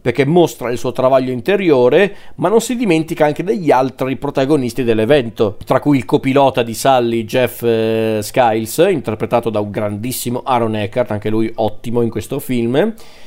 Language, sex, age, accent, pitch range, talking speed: Italian, male, 40-59, native, 120-155 Hz, 165 wpm